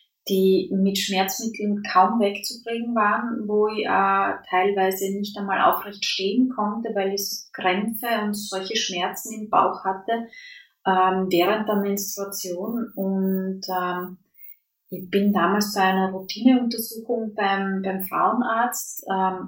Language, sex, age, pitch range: English, female, 30-49, 190-230 Hz